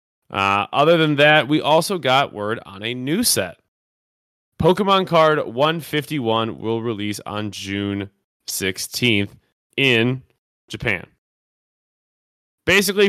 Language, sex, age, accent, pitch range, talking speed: English, male, 20-39, American, 105-135 Hz, 105 wpm